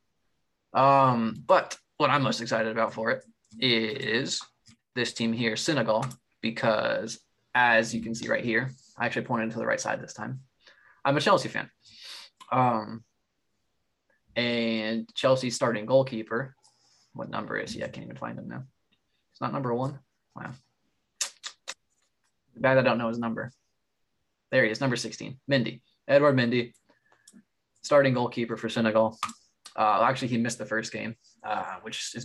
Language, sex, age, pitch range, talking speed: English, male, 20-39, 110-125 Hz, 155 wpm